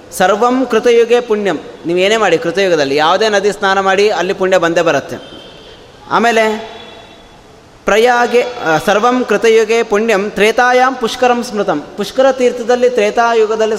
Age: 20-39